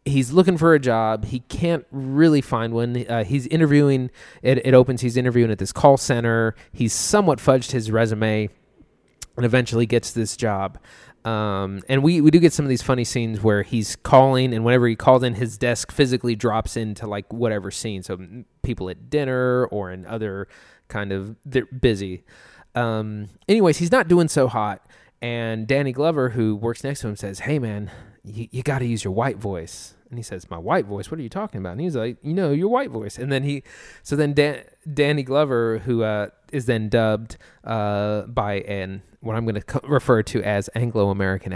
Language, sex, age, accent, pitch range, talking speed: English, male, 20-39, American, 110-135 Hz, 200 wpm